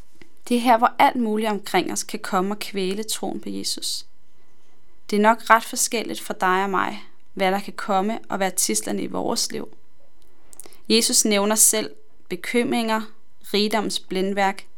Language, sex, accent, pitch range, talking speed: Danish, female, native, 195-240 Hz, 160 wpm